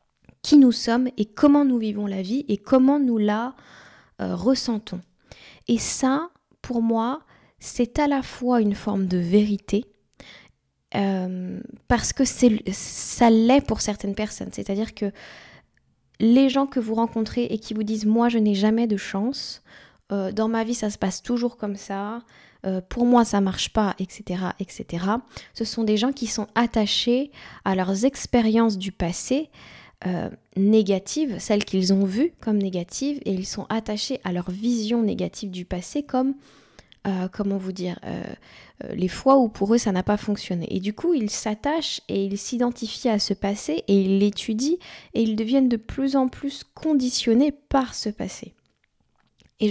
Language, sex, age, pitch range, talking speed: French, female, 20-39, 200-250 Hz, 175 wpm